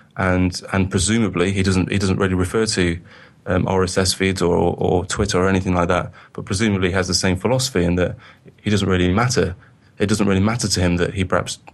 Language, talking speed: English, 215 wpm